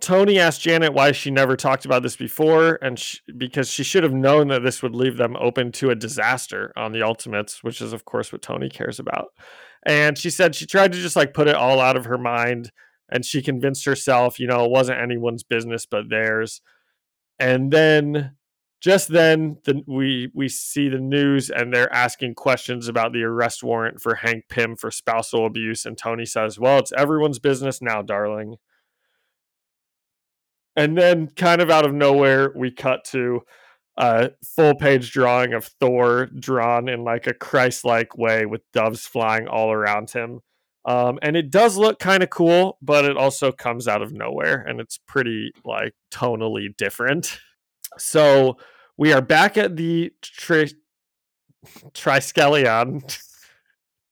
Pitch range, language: 120-145 Hz, English